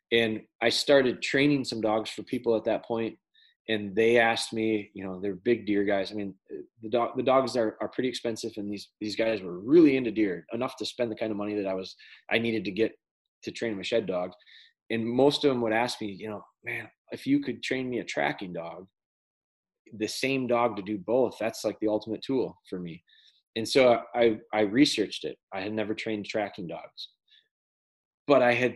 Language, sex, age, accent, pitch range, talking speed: English, male, 20-39, American, 105-130 Hz, 215 wpm